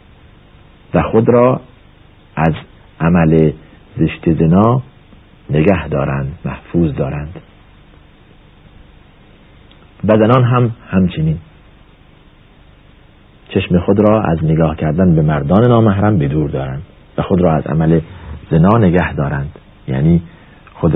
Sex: male